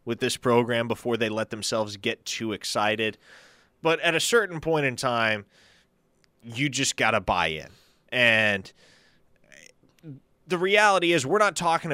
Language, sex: English, male